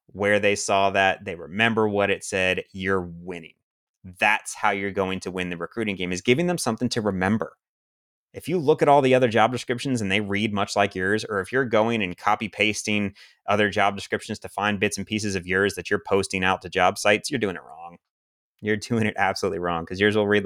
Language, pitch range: English, 95-120 Hz